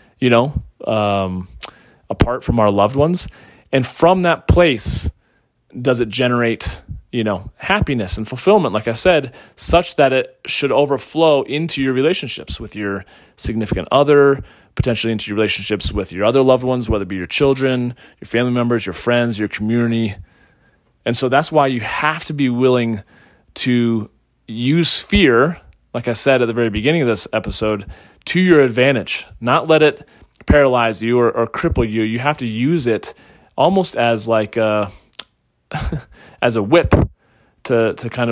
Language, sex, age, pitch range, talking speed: English, male, 30-49, 110-135 Hz, 165 wpm